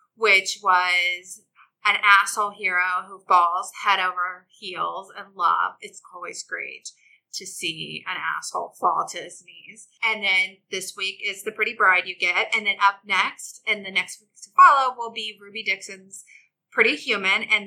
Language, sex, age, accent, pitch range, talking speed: English, female, 20-39, American, 185-230 Hz, 170 wpm